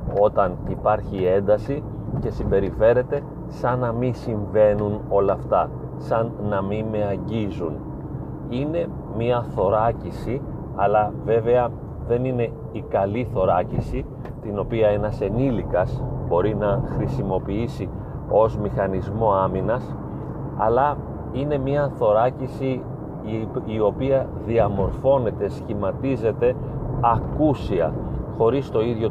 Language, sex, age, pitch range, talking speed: Greek, male, 30-49, 105-125 Hz, 100 wpm